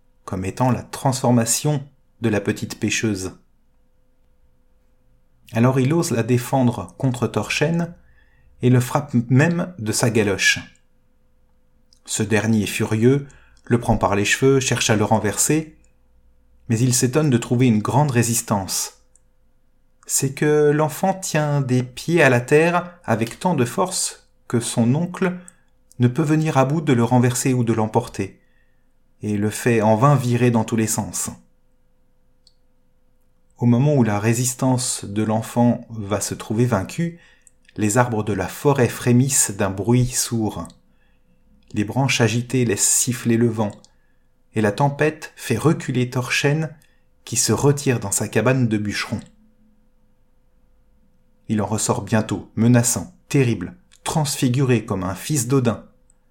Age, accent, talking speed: 30-49, French, 140 wpm